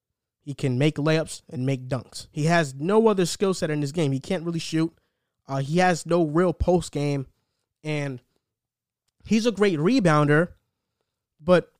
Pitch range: 150-195 Hz